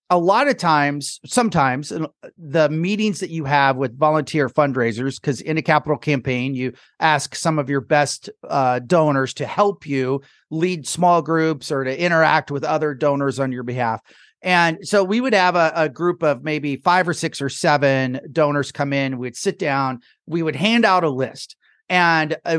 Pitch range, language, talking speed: 140-170 Hz, English, 185 wpm